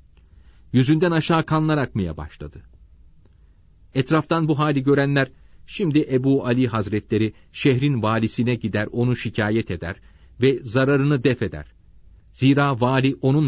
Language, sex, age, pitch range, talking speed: Turkish, male, 40-59, 85-135 Hz, 115 wpm